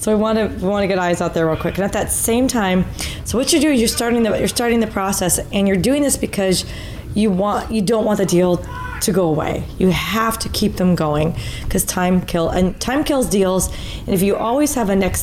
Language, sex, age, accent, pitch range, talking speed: English, female, 30-49, American, 175-220 Hz, 245 wpm